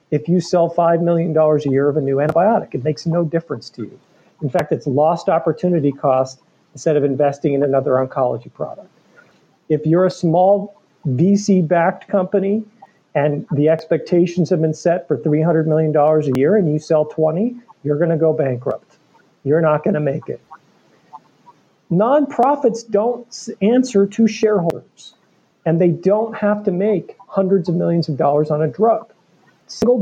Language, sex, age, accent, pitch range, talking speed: English, male, 40-59, American, 150-195 Hz, 165 wpm